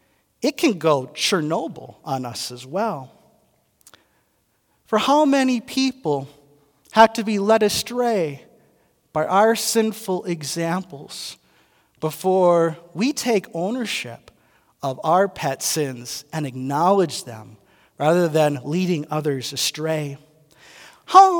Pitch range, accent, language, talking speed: 145-235 Hz, American, English, 105 wpm